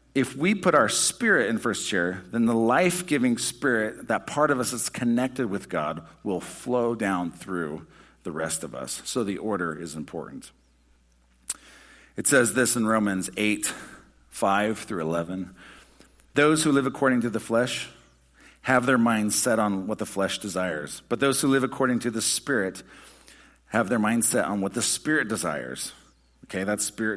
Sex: male